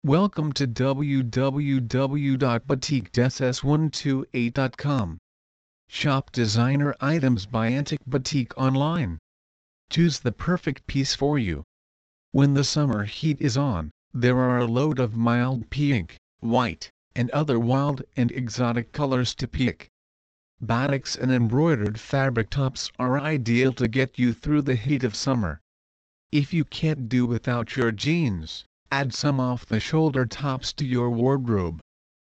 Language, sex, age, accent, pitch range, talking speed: English, male, 50-69, American, 110-140 Hz, 125 wpm